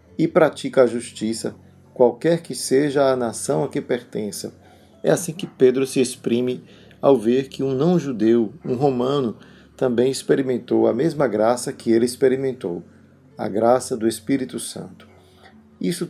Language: Portuguese